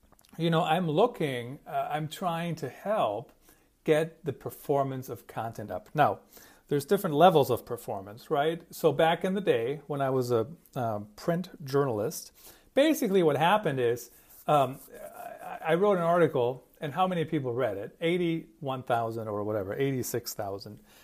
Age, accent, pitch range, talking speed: 40-59, American, 120-170 Hz, 155 wpm